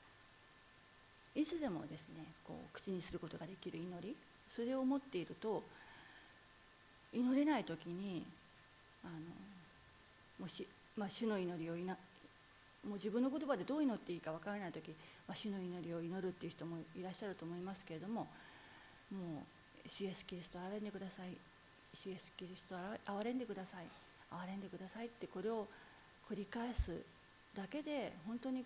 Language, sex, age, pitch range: Japanese, female, 40-59, 170-225 Hz